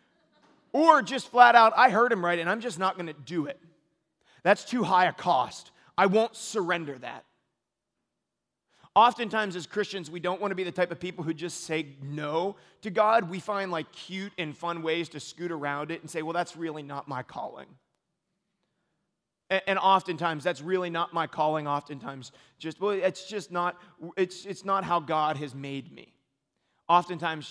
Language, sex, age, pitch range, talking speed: English, male, 30-49, 150-180 Hz, 185 wpm